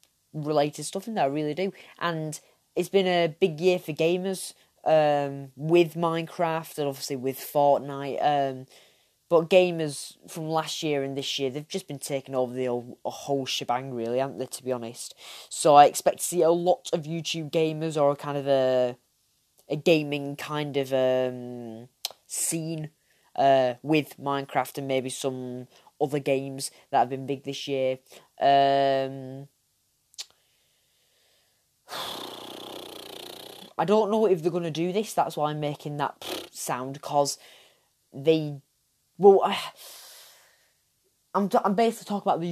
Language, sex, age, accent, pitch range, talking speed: English, female, 10-29, British, 135-175 Hz, 150 wpm